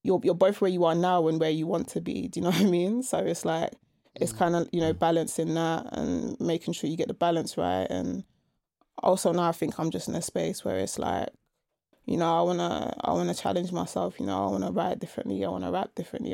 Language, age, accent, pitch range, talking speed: English, 20-39, British, 160-185 Hz, 250 wpm